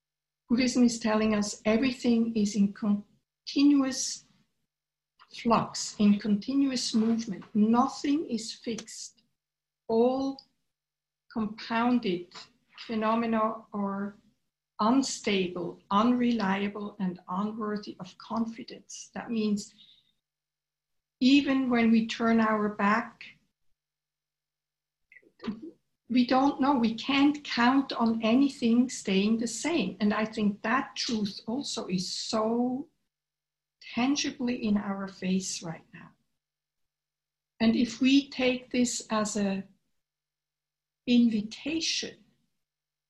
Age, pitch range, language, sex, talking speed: 60-79, 200-245 Hz, English, female, 90 wpm